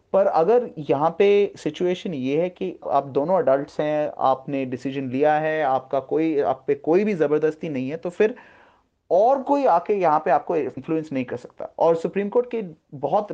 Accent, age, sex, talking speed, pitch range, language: native, 30-49, male, 190 wpm, 140-185 Hz, Hindi